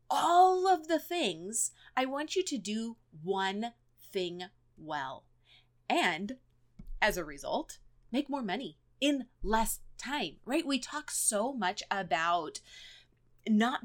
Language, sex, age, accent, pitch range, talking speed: English, female, 30-49, American, 185-240 Hz, 125 wpm